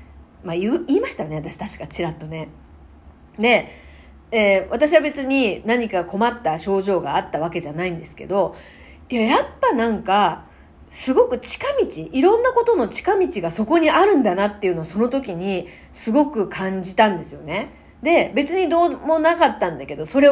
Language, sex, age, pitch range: Japanese, female, 40-59, 165-265 Hz